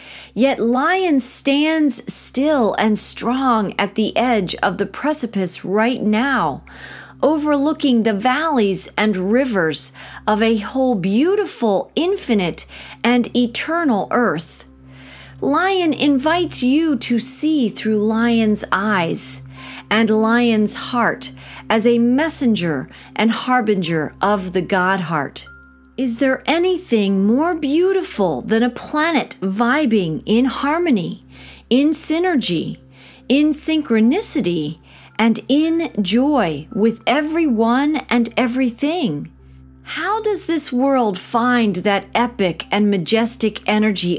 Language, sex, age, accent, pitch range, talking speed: English, female, 40-59, American, 195-275 Hz, 105 wpm